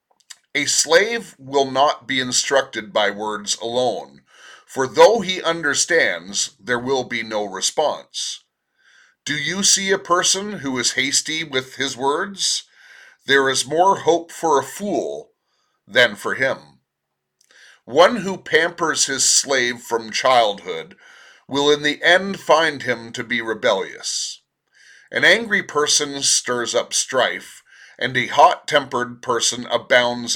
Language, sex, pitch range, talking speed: English, male, 125-210 Hz, 130 wpm